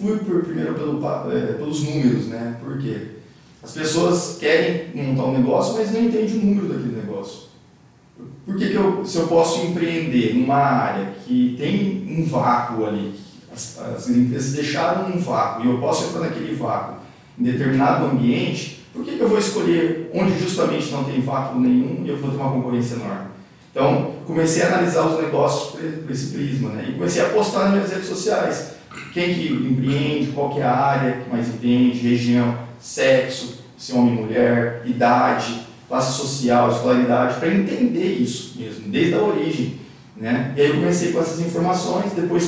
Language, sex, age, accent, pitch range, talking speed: Portuguese, male, 40-59, Brazilian, 125-175 Hz, 175 wpm